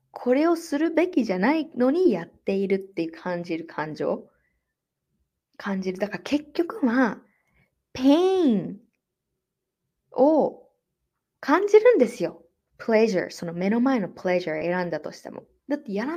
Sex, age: female, 20-39